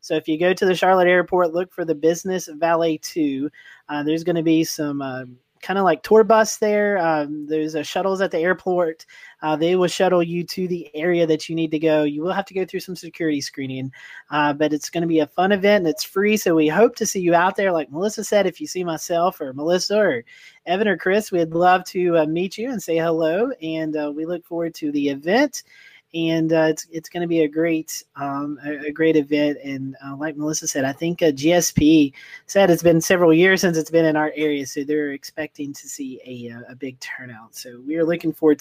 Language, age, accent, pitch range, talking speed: English, 30-49, American, 155-190 Hz, 235 wpm